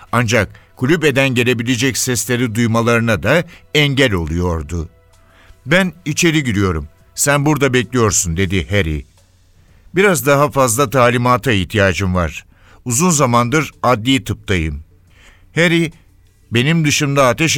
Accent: native